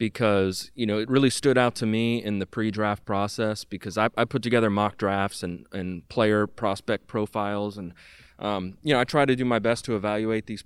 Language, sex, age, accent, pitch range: Japanese, male, 20-39, American, 100-115 Hz